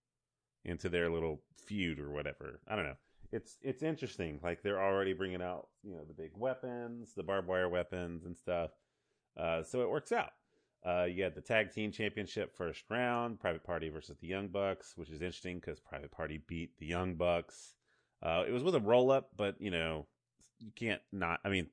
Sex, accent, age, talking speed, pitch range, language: male, American, 30-49, 200 wpm, 80-105 Hz, English